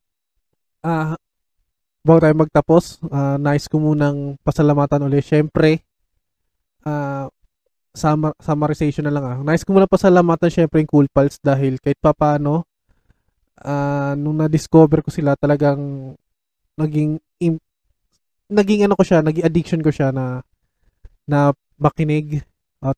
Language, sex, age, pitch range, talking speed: Filipino, male, 20-39, 140-165 Hz, 130 wpm